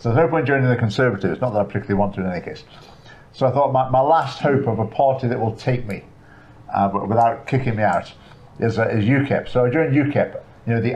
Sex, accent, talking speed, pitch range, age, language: male, British, 255 wpm, 115-140 Hz, 50-69, English